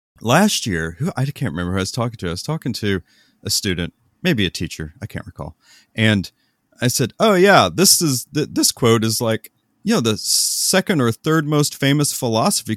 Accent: American